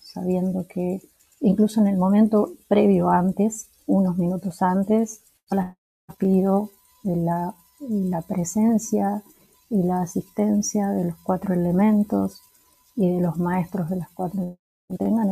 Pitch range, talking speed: 175-210 Hz, 135 wpm